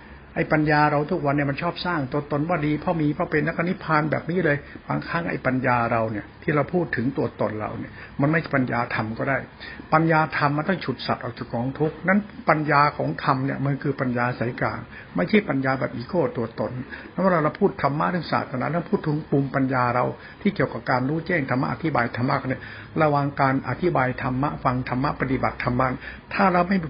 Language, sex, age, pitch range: Thai, male, 70-89, 125-170 Hz